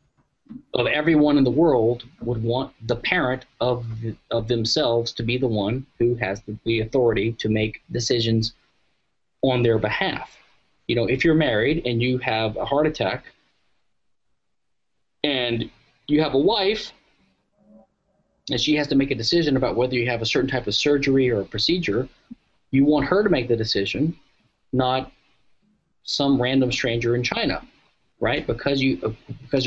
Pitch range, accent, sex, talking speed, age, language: 115-145 Hz, American, male, 160 wpm, 30-49, English